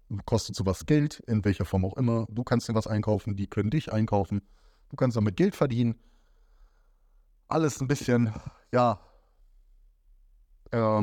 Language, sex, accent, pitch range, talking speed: German, male, German, 105-130 Hz, 150 wpm